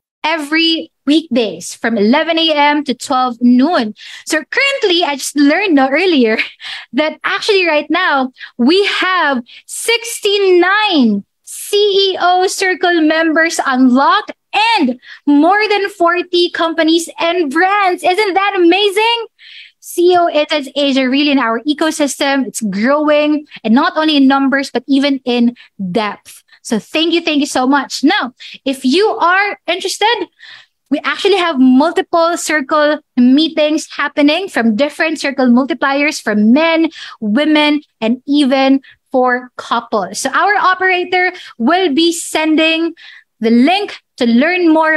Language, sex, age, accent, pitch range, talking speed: Filipino, female, 20-39, native, 270-350 Hz, 125 wpm